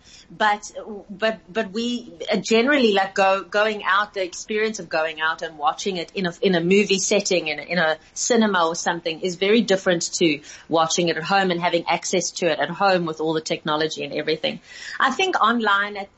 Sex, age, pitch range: female, 30-49, 175-210 Hz